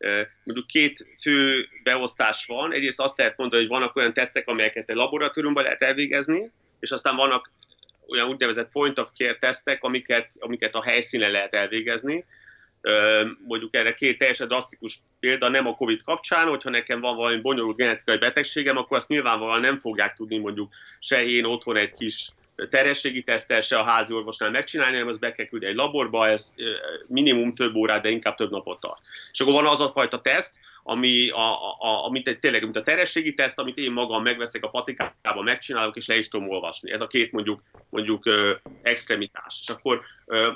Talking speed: 175 wpm